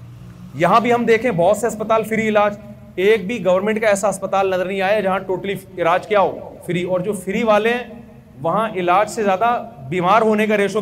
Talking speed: 190 wpm